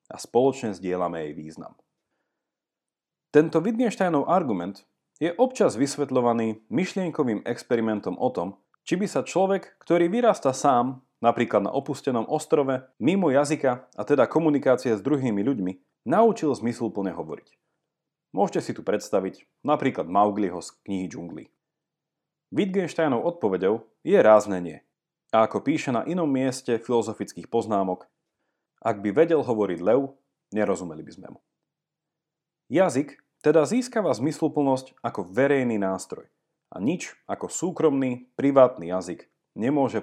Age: 30-49